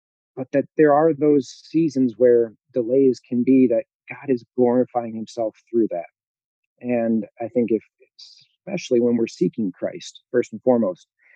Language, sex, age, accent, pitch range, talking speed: English, male, 40-59, American, 115-135 Hz, 155 wpm